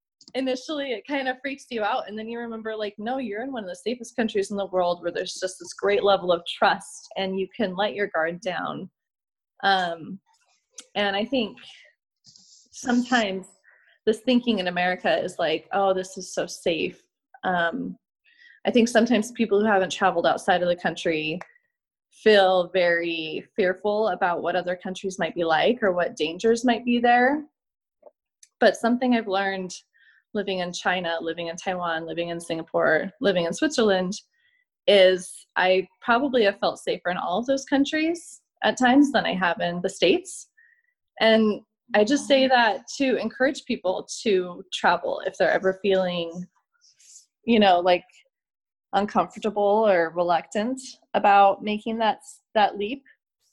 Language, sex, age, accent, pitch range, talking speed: English, female, 20-39, American, 185-245 Hz, 160 wpm